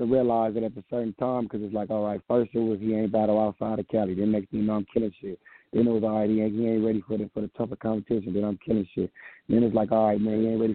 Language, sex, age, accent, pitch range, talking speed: English, male, 30-49, American, 110-145 Hz, 330 wpm